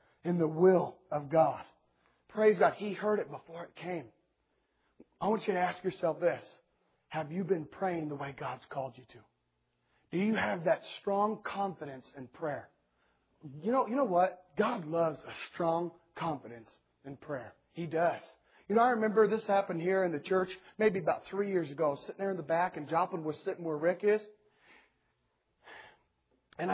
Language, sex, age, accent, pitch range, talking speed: English, male, 40-59, American, 140-185 Hz, 180 wpm